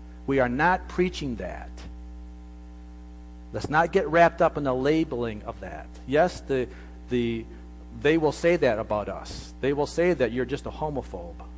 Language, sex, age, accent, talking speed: English, male, 50-69, American, 165 wpm